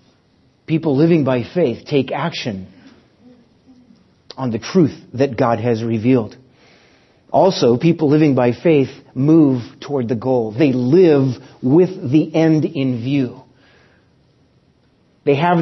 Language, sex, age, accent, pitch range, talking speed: English, male, 40-59, American, 125-155 Hz, 120 wpm